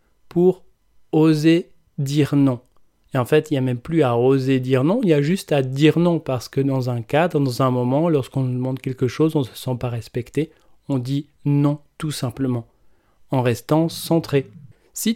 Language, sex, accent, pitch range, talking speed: French, male, French, 120-155 Hz, 200 wpm